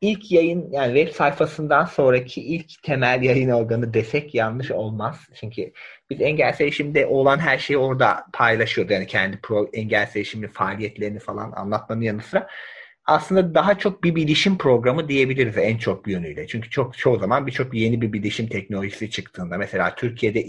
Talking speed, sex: 150 wpm, male